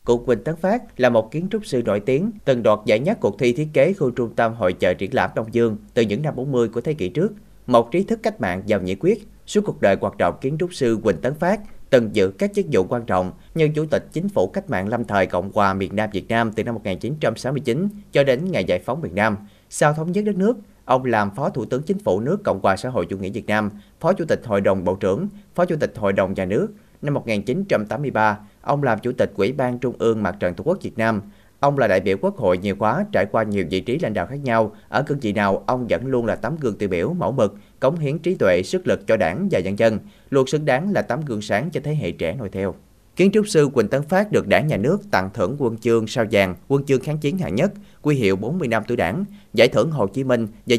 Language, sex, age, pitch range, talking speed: Vietnamese, male, 20-39, 105-165 Hz, 270 wpm